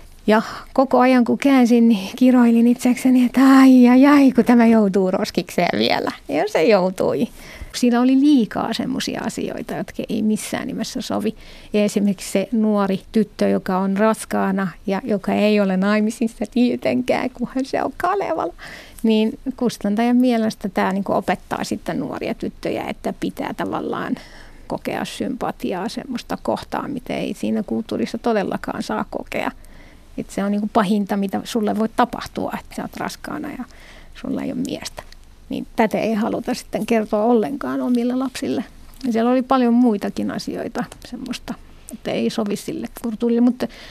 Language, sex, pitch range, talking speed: Finnish, female, 205-245 Hz, 150 wpm